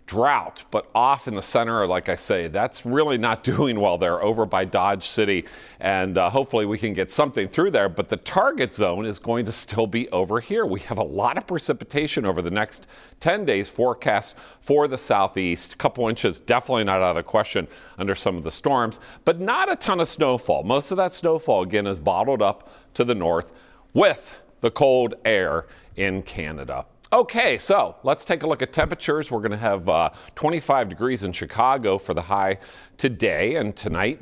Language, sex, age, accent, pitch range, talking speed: English, male, 40-59, American, 95-140 Hz, 200 wpm